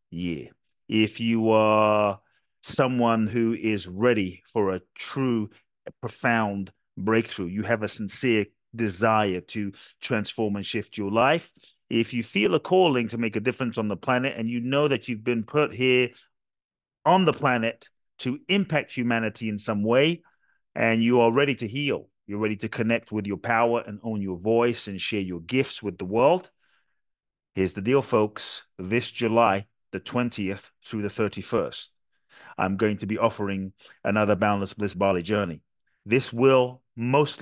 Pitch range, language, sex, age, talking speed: 100-125 Hz, English, male, 30-49, 165 wpm